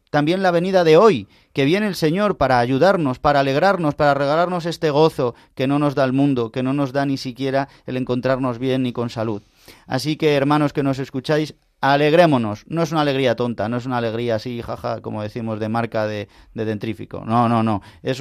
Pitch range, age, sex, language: 120-150 Hz, 30-49, male, Spanish